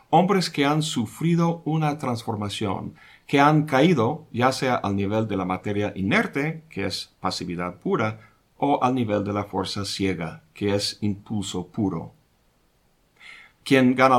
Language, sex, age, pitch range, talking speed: Spanish, male, 50-69, 100-135 Hz, 145 wpm